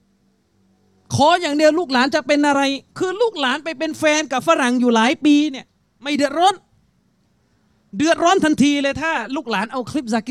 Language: Thai